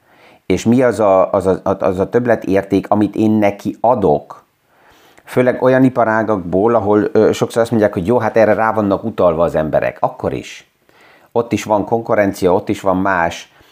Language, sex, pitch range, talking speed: Hungarian, male, 100-115 Hz, 175 wpm